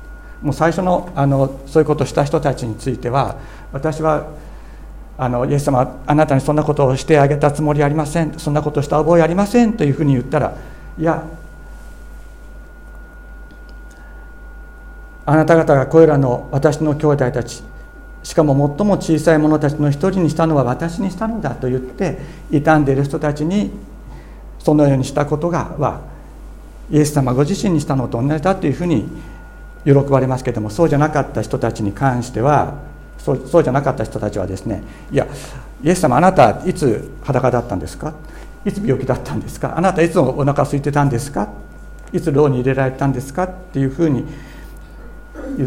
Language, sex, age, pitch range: Japanese, male, 60-79, 125-155 Hz